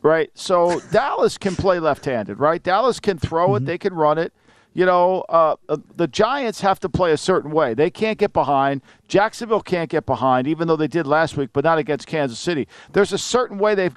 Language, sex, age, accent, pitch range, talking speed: English, male, 50-69, American, 160-205 Hz, 215 wpm